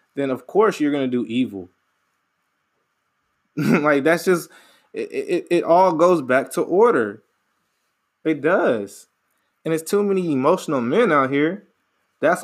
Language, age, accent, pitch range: English, 20-39, American, 130-170 Hz